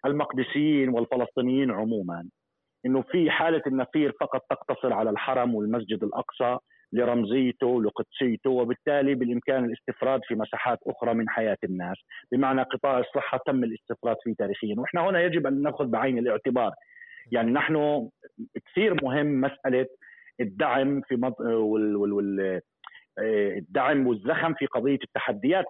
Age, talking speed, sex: 40-59, 125 wpm, male